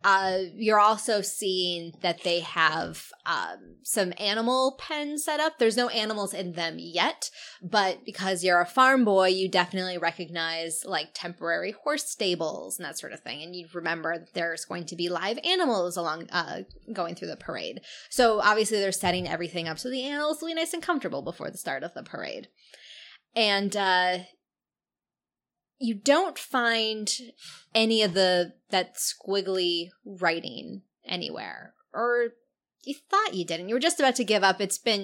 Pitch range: 185-240 Hz